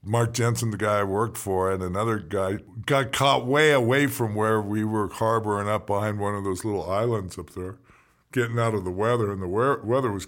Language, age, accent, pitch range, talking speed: English, 50-69, American, 105-135 Hz, 215 wpm